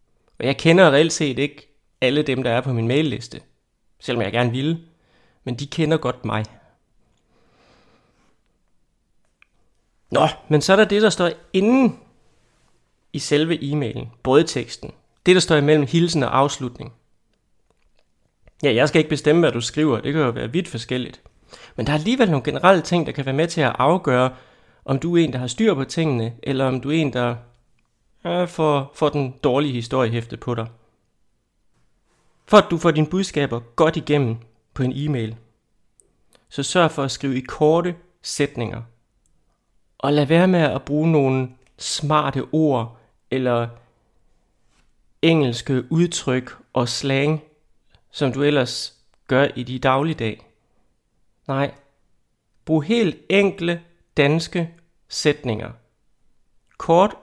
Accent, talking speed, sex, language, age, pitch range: native, 150 wpm, male, Danish, 30-49, 125-160 Hz